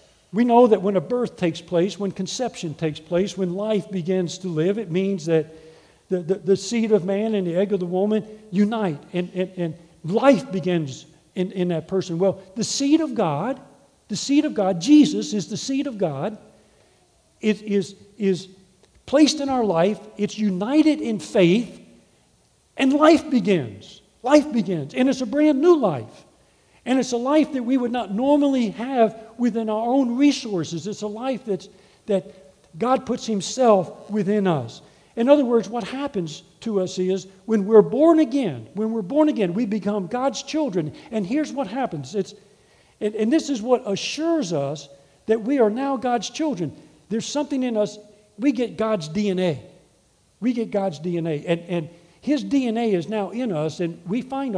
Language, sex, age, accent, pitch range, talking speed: English, male, 50-69, American, 185-245 Hz, 180 wpm